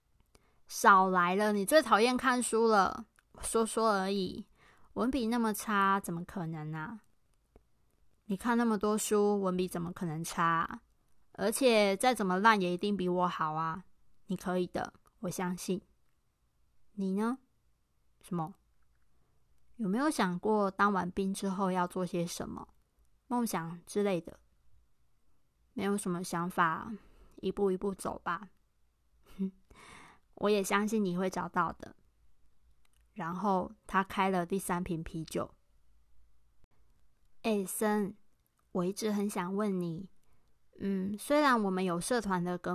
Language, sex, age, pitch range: Chinese, female, 20-39, 180-215 Hz